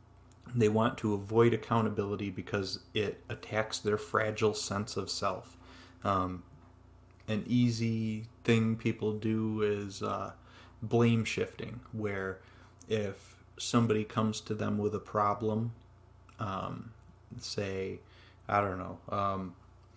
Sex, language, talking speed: male, English, 115 wpm